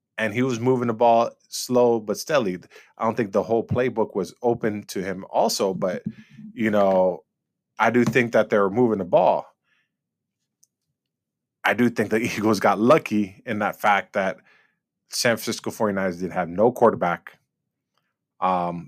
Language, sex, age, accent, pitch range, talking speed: English, male, 20-39, American, 100-125 Hz, 160 wpm